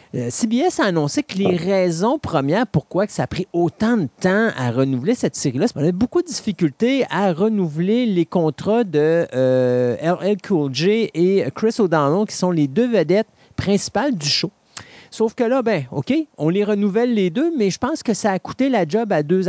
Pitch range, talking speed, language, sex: 155-210 Hz, 200 wpm, French, male